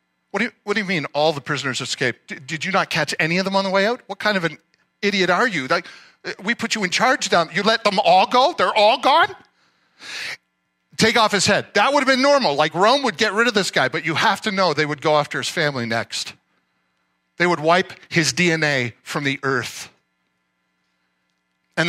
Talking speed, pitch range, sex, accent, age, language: 225 wpm, 105-165 Hz, male, American, 50-69, English